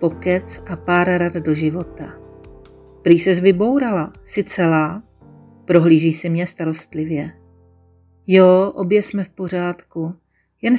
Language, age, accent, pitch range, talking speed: Czech, 40-59, native, 165-210 Hz, 110 wpm